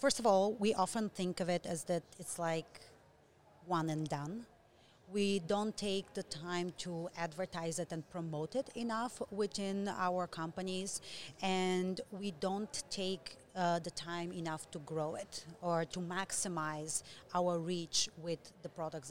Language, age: Dutch, 30-49